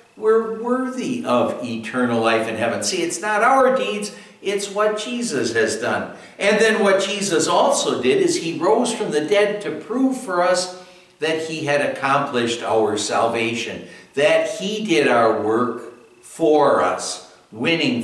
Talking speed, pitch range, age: 155 wpm, 110-180 Hz, 60-79